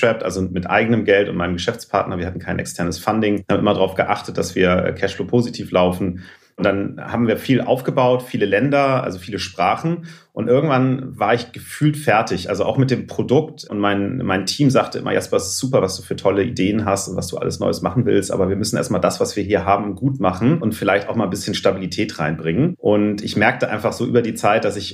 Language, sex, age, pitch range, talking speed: German, male, 30-49, 90-115 Hz, 230 wpm